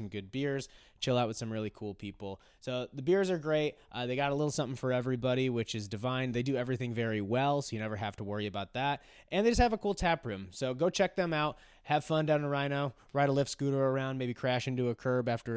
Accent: American